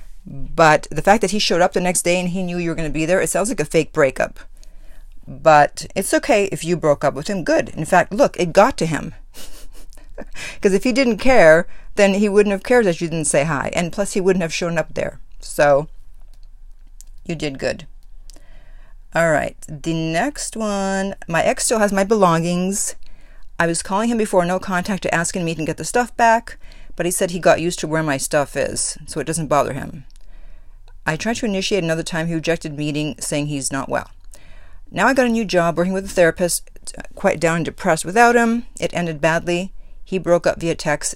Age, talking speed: 50-69, 220 wpm